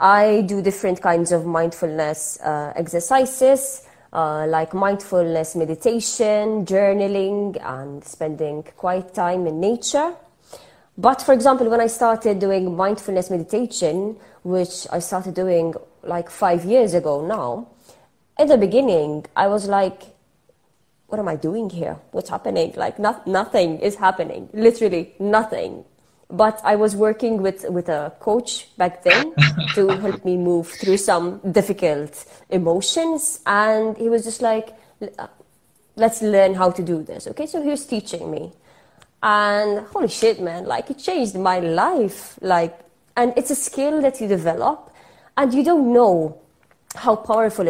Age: 20-39